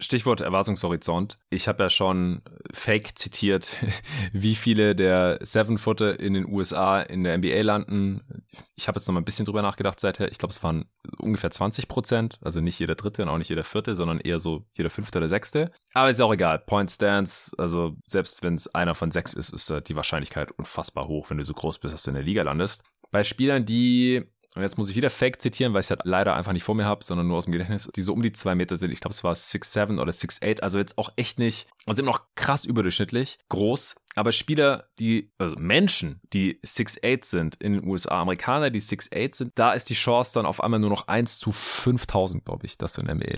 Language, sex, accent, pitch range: German, male, German, 95-115 Hz